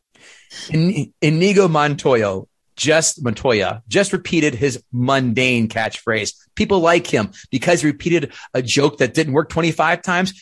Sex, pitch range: male, 115-175 Hz